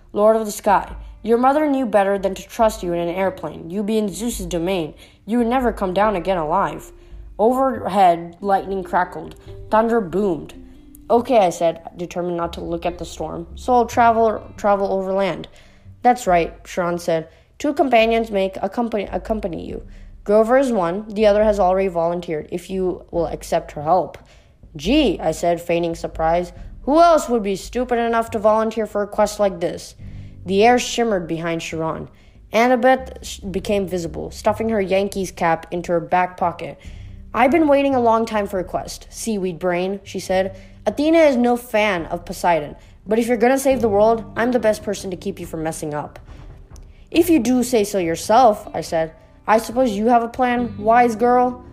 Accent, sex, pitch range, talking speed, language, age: American, female, 175-235 Hz, 180 wpm, English, 20-39